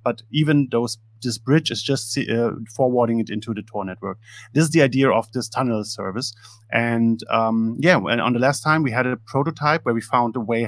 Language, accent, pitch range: English, German, 110-130 Hz